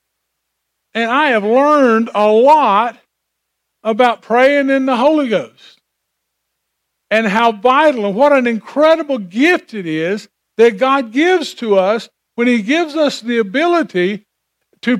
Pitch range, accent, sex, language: 215-285 Hz, American, male, English